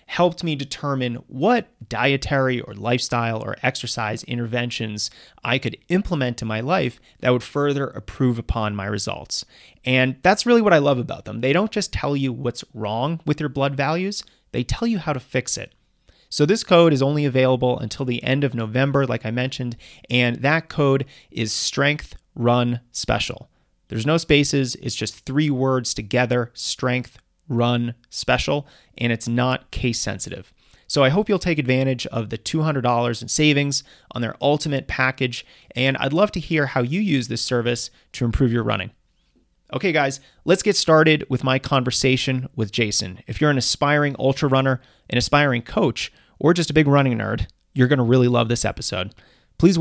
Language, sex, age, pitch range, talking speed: English, male, 30-49, 120-145 Hz, 175 wpm